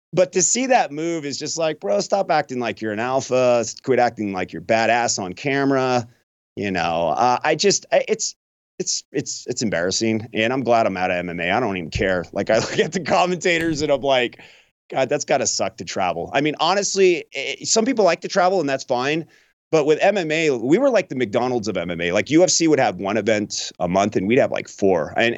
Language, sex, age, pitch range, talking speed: English, male, 30-49, 115-175 Hz, 220 wpm